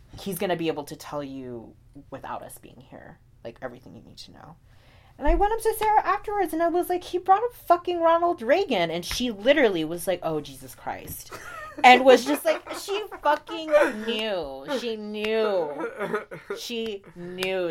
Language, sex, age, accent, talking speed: English, female, 20-39, American, 185 wpm